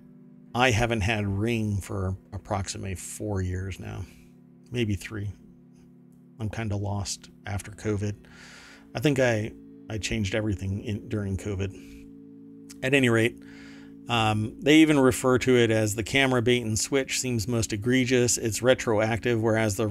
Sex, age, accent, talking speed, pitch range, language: male, 40-59, American, 140 wpm, 100-120 Hz, English